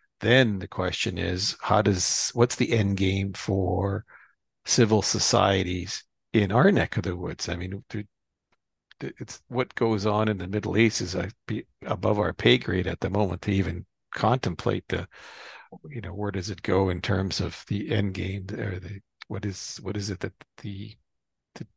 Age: 50-69